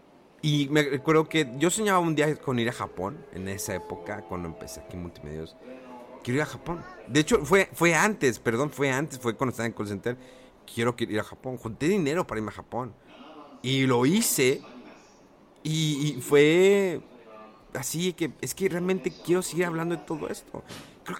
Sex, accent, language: male, Mexican, Spanish